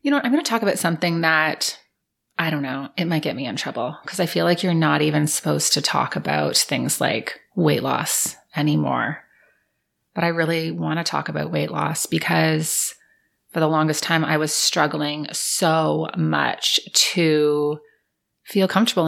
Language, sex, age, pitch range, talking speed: English, female, 30-49, 150-190 Hz, 175 wpm